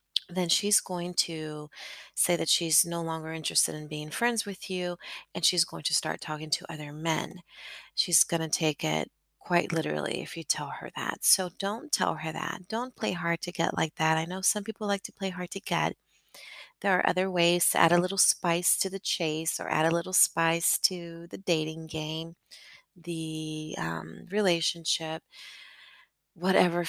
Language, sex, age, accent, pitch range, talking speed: English, female, 30-49, American, 155-175 Hz, 185 wpm